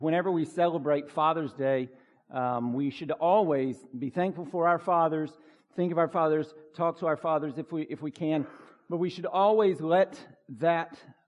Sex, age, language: male, 50-69, English